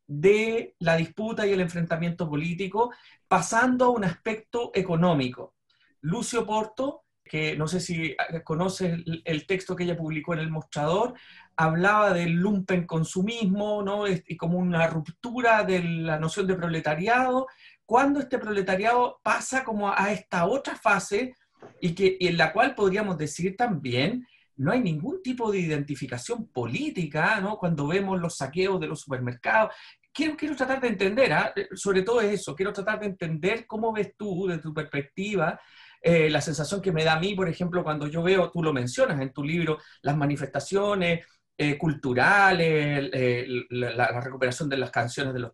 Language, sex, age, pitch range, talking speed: Spanish, male, 40-59, 155-205 Hz, 165 wpm